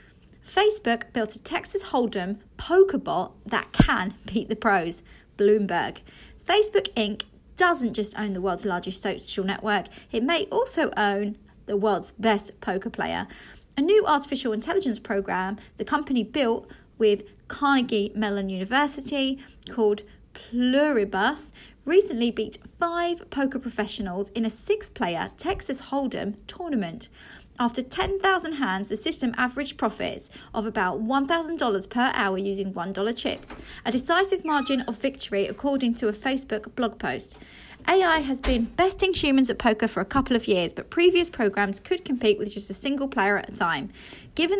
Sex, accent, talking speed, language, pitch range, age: female, British, 145 wpm, English, 205-290 Hz, 30-49